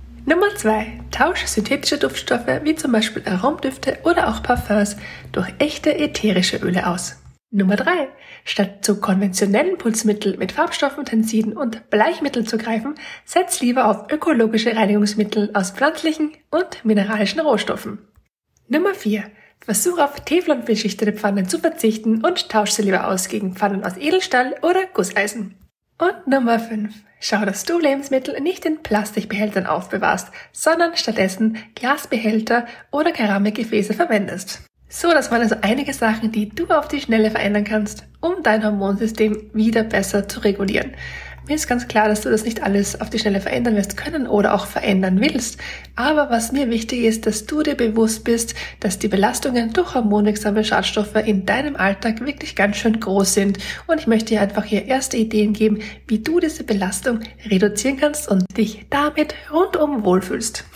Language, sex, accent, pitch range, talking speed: German, female, German, 210-285 Hz, 155 wpm